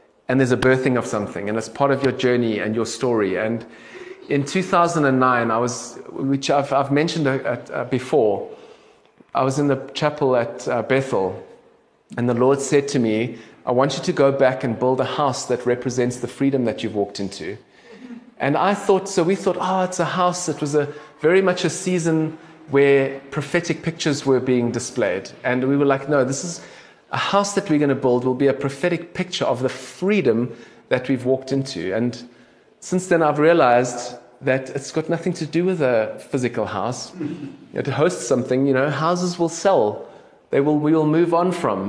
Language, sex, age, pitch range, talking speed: English, male, 30-49, 125-170 Hz, 195 wpm